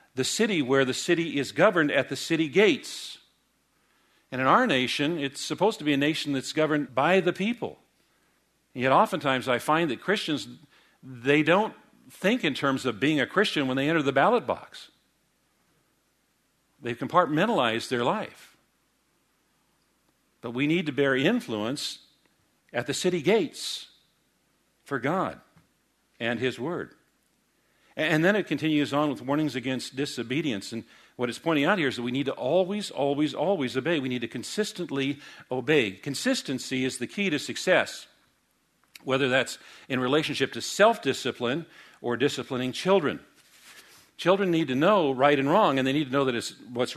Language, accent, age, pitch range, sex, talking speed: English, American, 50-69, 130-155 Hz, male, 160 wpm